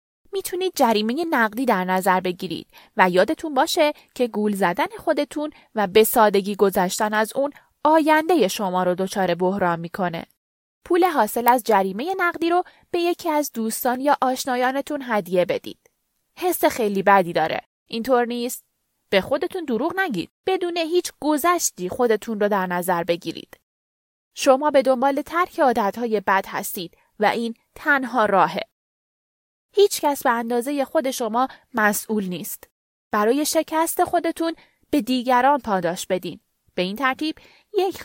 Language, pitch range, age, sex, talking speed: Persian, 210-315 Hz, 20-39, female, 135 wpm